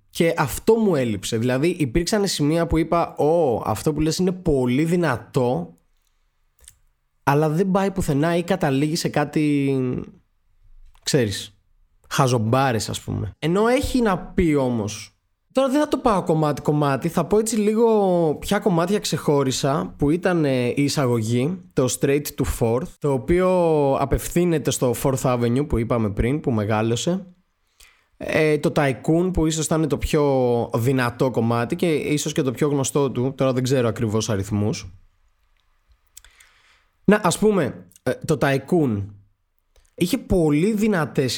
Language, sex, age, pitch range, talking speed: Greek, male, 20-39, 110-165 Hz, 140 wpm